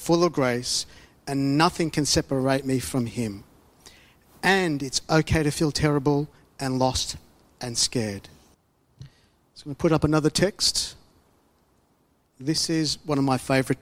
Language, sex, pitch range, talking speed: English, male, 135-170 Hz, 150 wpm